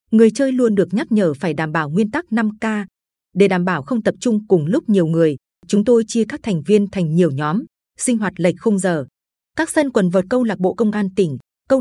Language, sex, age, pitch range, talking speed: Vietnamese, female, 20-39, 185-230 Hz, 245 wpm